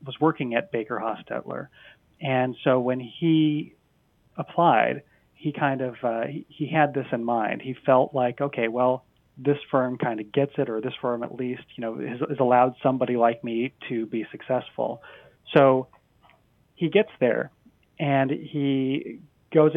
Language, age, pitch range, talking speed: English, 30-49, 125-150 Hz, 160 wpm